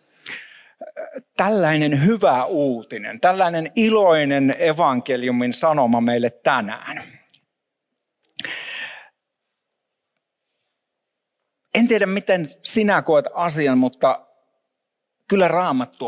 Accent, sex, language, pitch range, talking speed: native, male, Finnish, 130-210 Hz, 65 wpm